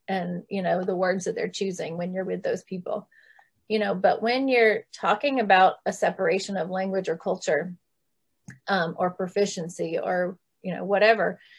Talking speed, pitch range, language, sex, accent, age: 170 wpm, 185-215 Hz, English, female, American, 30-49